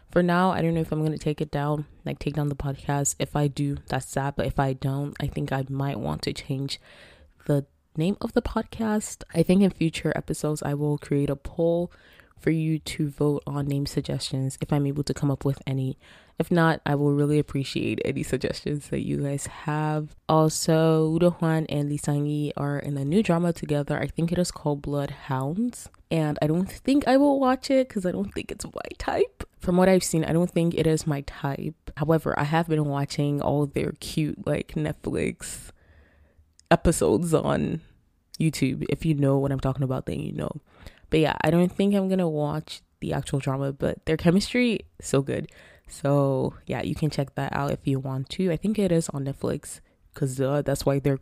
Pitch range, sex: 140-165 Hz, female